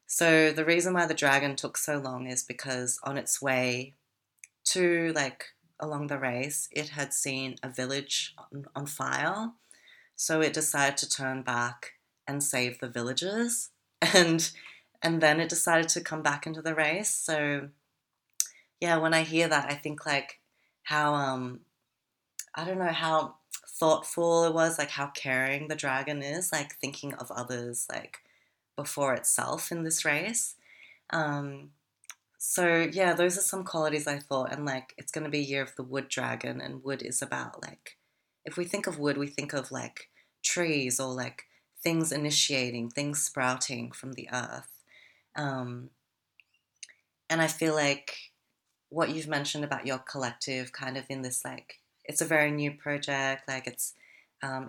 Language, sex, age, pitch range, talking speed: English, female, 30-49, 130-160 Hz, 165 wpm